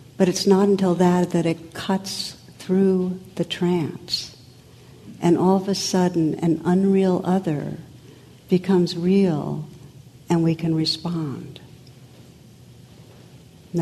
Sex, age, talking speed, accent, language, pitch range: female, 60-79, 115 wpm, American, English, 150-180 Hz